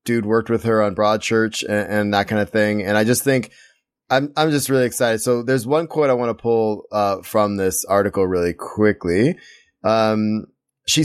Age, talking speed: 20-39, 205 wpm